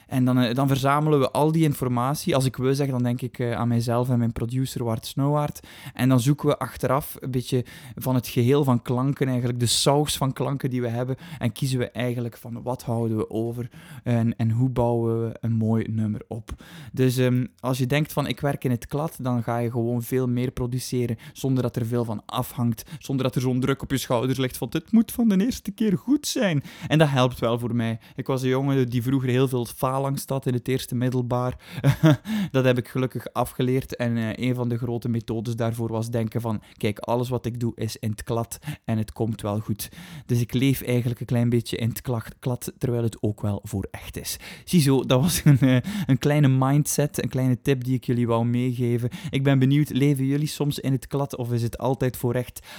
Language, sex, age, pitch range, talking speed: Dutch, male, 20-39, 120-135 Hz, 225 wpm